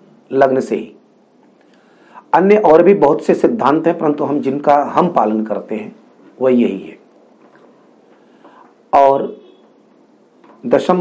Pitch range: 140-205 Hz